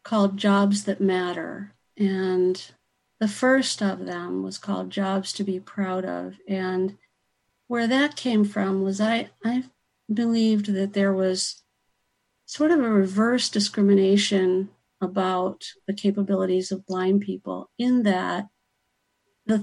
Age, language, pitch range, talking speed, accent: 50-69, English, 185-235 Hz, 130 wpm, American